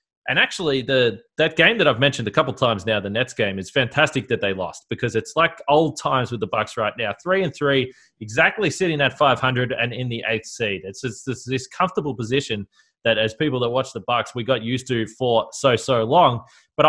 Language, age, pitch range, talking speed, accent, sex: English, 20-39, 110-150 Hz, 230 wpm, Australian, male